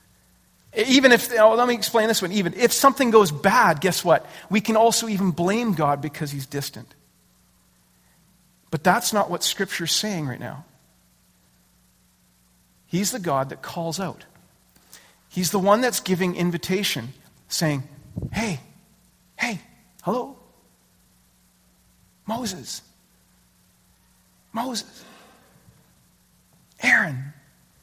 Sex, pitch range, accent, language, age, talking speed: male, 130-205 Hz, American, English, 40-59, 110 wpm